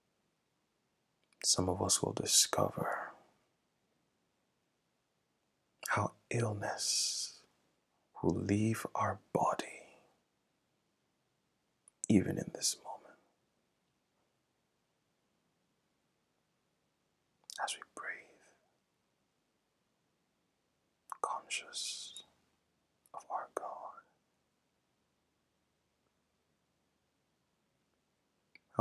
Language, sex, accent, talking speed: English, male, American, 50 wpm